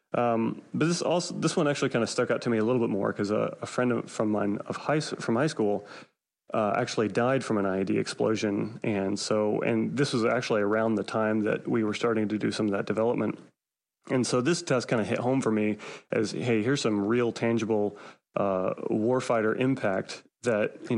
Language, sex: English, male